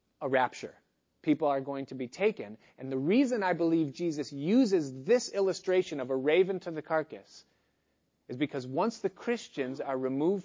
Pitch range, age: 135-185 Hz, 30-49